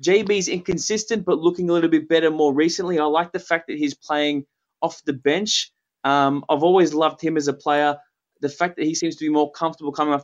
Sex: male